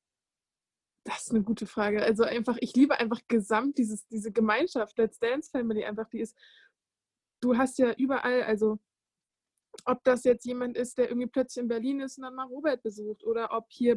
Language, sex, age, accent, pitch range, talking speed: German, female, 20-39, German, 225-255 Hz, 185 wpm